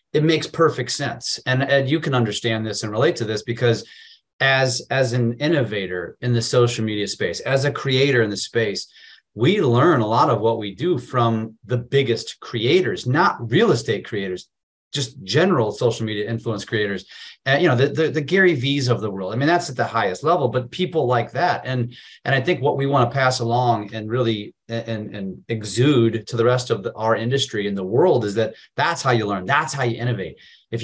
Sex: male